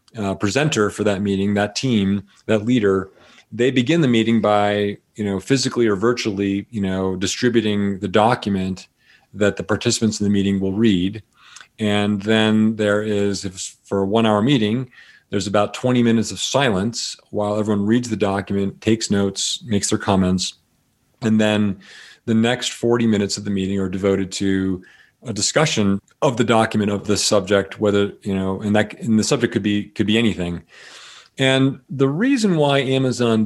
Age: 40-59